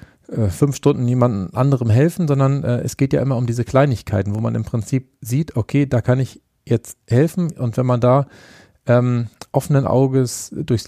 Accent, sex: German, male